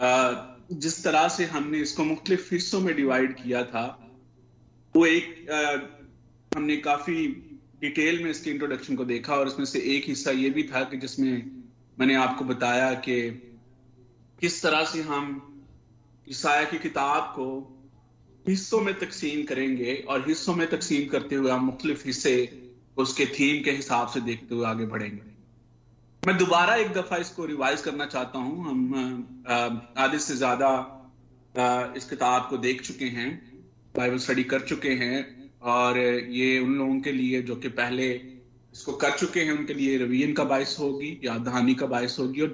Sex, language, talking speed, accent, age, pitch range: male, Hindi, 155 wpm, native, 30-49, 120-145 Hz